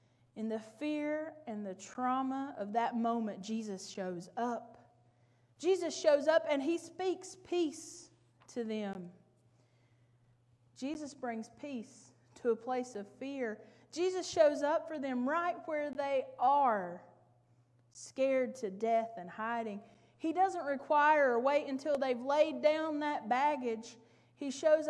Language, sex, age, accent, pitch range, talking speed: English, female, 30-49, American, 190-290 Hz, 135 wpm